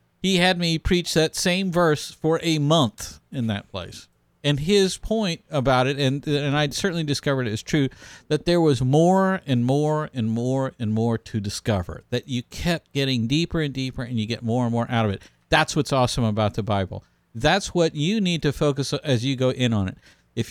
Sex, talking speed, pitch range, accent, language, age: male, 215 wpm, 115-155 Hz, American, English, 50-69